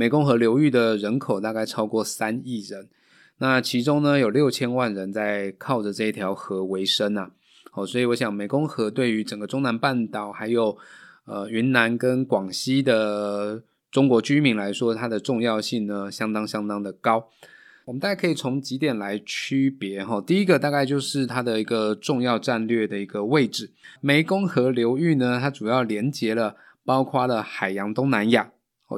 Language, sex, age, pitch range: Chinese, male, 20-39, 105-130 Hz